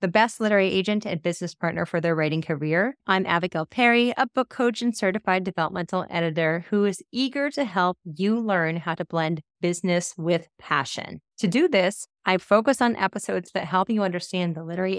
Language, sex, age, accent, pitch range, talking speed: English, female, 30-49, American, 170-215 Hz, 190 wpm